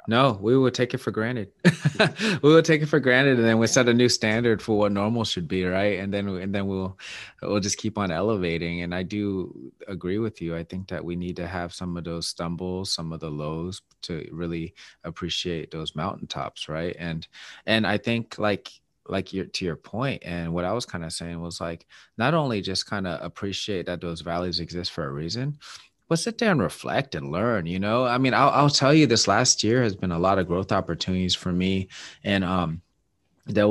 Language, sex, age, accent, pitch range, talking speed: English, male, 30-49, American, 90-110 Hz, 225 wpm